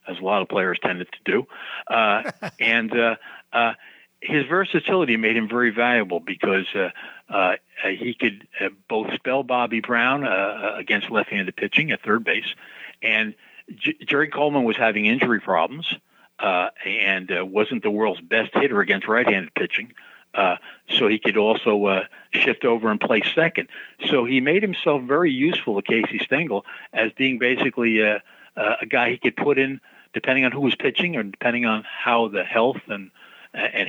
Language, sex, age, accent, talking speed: English, male, 60-79, American, 170 wpm